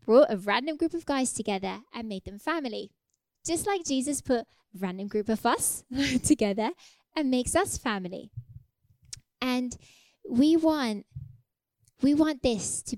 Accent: British